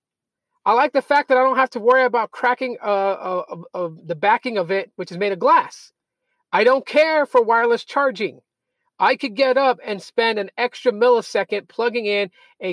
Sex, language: male, English